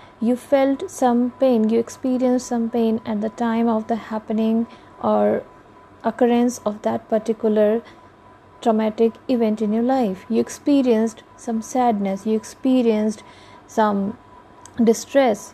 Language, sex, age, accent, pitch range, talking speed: English, female, 30-49, Indian, 215-255 Hz, 125 wpm